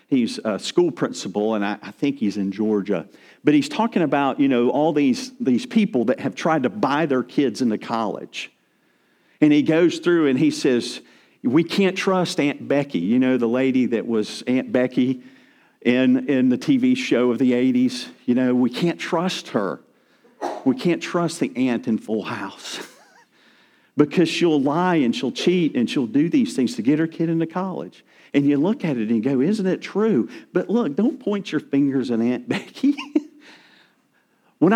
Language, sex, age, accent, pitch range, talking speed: English, male, 50-69, American, 130-215 Hz, 190 wpm